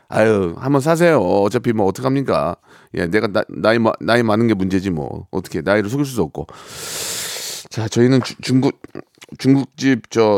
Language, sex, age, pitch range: Korean, male, 40-59, 110-145 Hz